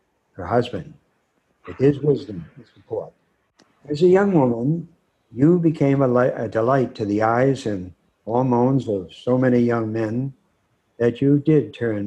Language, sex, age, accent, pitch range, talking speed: English, male, 60-79, American, 110-135 Hz, 145 wpm